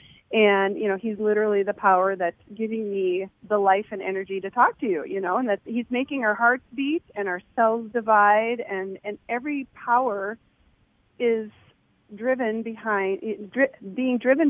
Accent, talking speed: American, 170 wpm